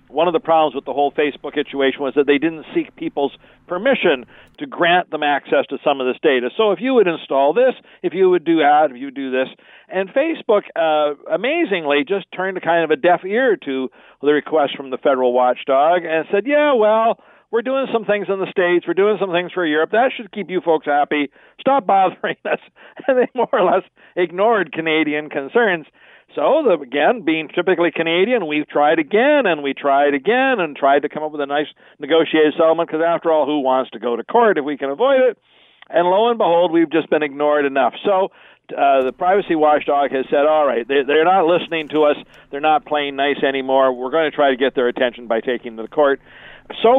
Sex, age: male, 50-69